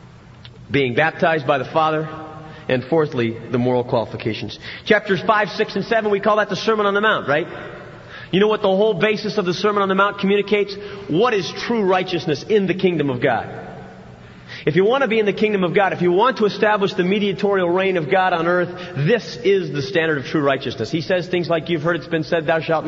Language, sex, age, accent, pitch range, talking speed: English, male, 40-59, American, 145-190 Hz, 225 wpm